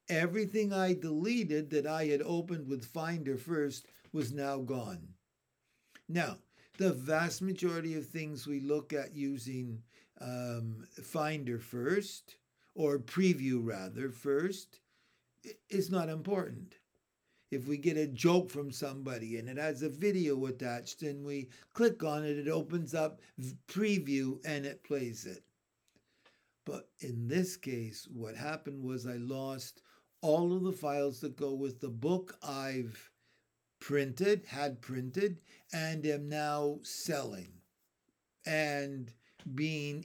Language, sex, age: English, male, 60-79